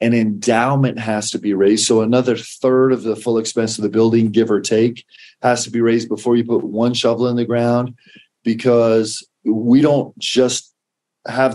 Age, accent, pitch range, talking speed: 40-59, American, 105-125 Hz, 185 wpm